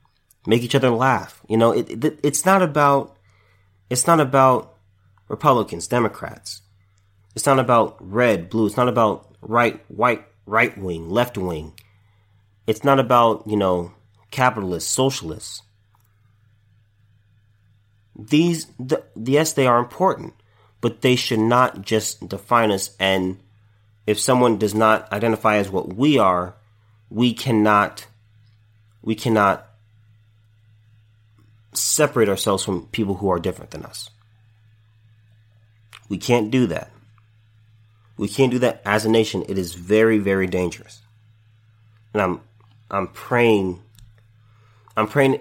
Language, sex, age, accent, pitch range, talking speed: English, male, 30-49, American, 105-115 Hz, 120 wpm